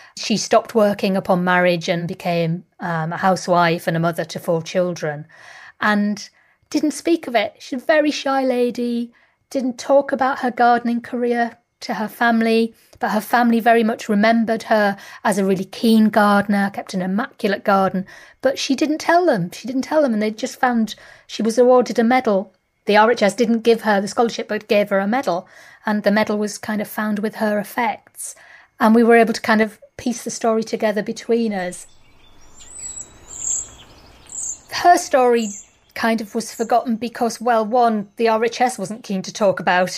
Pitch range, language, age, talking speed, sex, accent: 195-245 Hz, English, 40-59, 180 wpm, female, British